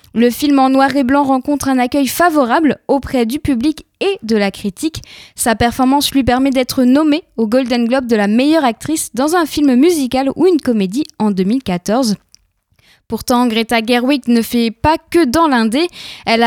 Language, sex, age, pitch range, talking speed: French, female, 10-29, 230-295 Hz, 180 wpm